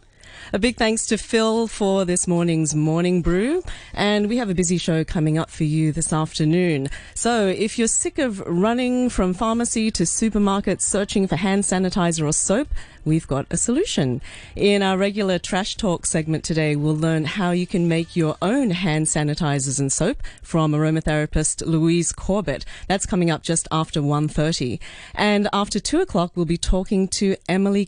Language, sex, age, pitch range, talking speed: English, female, 30-49, 155-200 Hz, 170 wpm